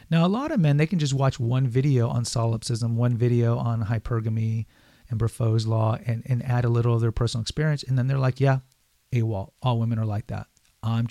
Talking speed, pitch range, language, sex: 220 wpm, 115-140 Hz, English, male